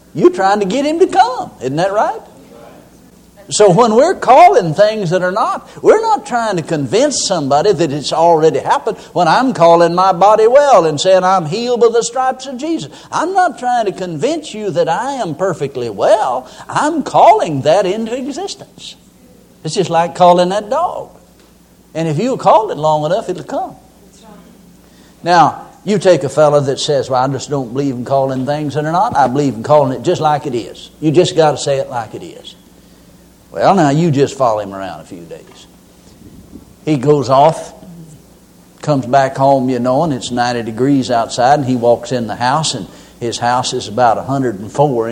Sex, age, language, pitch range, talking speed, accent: male, 60-79, English, 135-195 Hz, 195 wpm, American